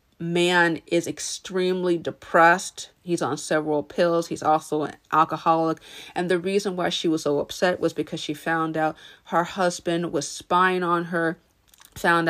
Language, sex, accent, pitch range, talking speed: English, female, American, 155-170 Hz, 155 wpm